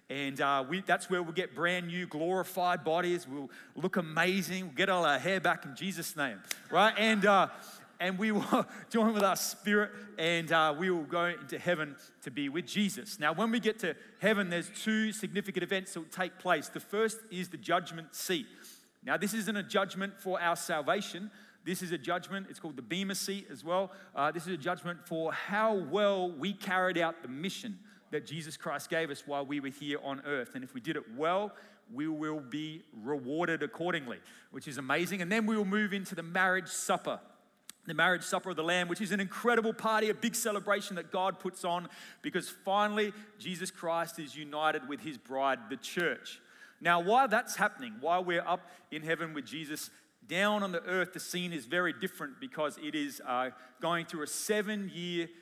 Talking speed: 200 wpm